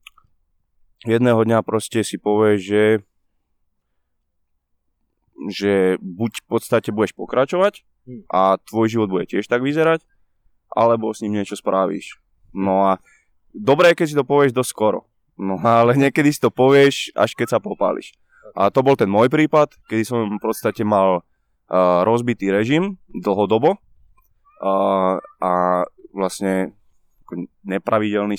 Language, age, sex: Slovak, 20-39, male